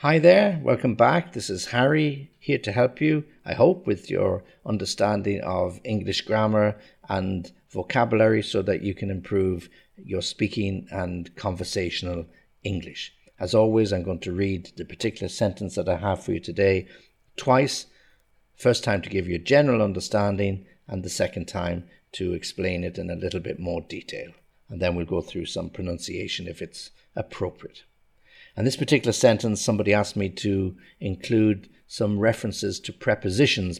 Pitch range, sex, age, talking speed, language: 95-110 Hz, male, 50-69, 160 wpm, English